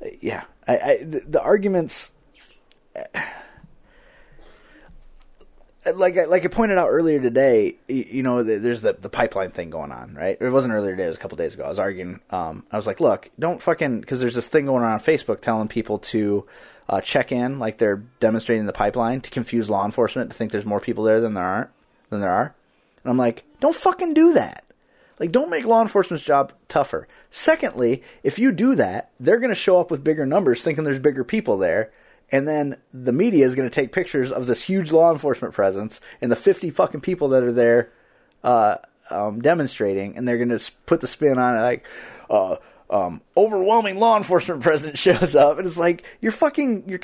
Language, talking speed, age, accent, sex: English, 205 wpm, 30-49, American, male